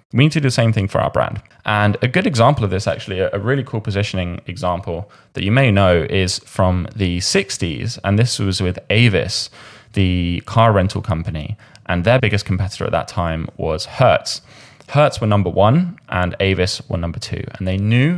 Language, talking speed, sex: English, 200 wpm, male